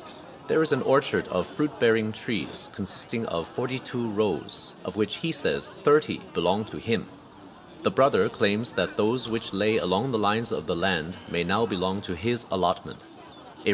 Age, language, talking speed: 40-59, English, 170 wpm